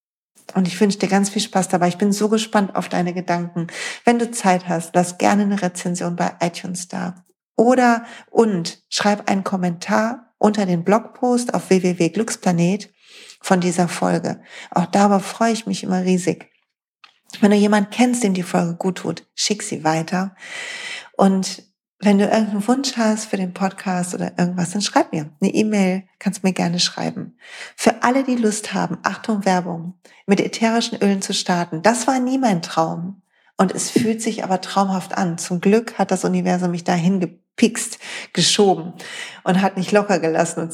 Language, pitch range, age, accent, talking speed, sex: German, 180-225 Hz, 40-59, German, 175 wpm, female